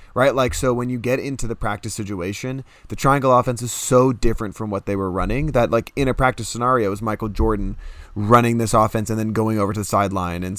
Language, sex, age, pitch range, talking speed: English, male, 20-39, 100-125 Hz, 240 wpm